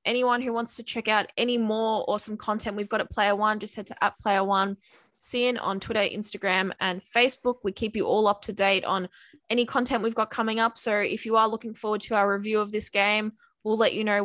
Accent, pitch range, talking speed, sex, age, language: Australian, 205-235 Hz, 245 wpm, female, 10-29, English